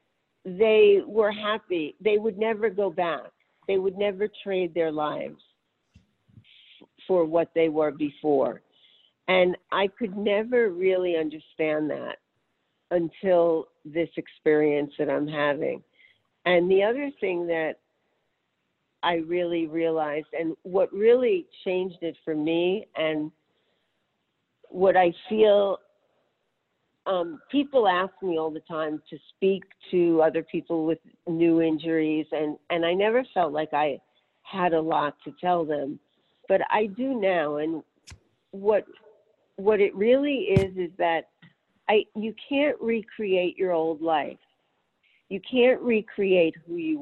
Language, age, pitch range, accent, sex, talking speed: English, 50-69, 160-205 Hz, American, female, 130 wpm